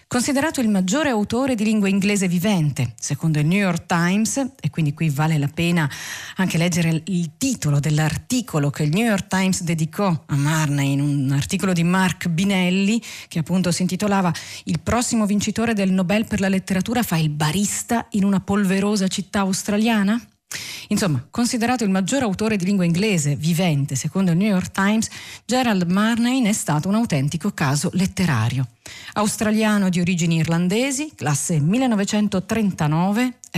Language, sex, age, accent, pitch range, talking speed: Italian, female, 40-59, native, 155-210 Hz, 155 wpm